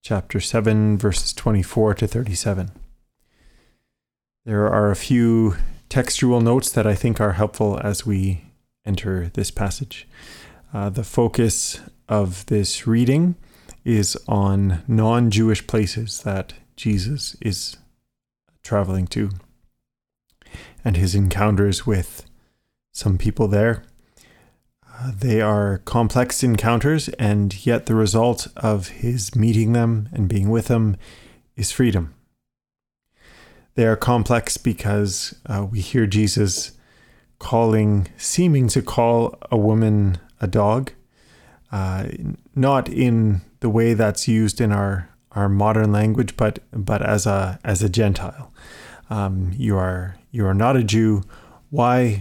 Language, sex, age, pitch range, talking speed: English, male, 30-49, 100-115 Hz, 120 wpm